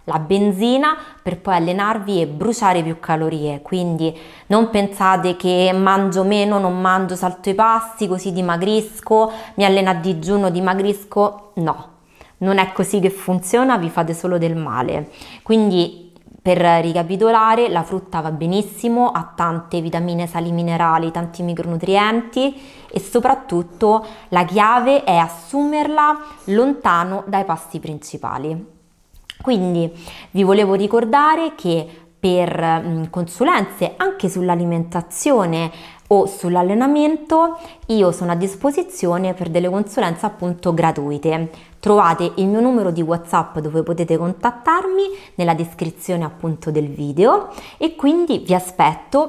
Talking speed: 120 wpm